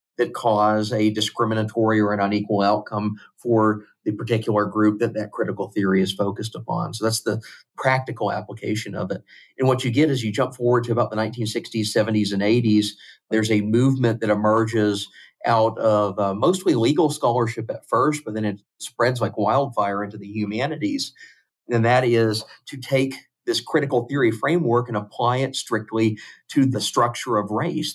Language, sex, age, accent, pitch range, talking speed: English, male, 40-59, American, 105-120 Hz, 175 wpm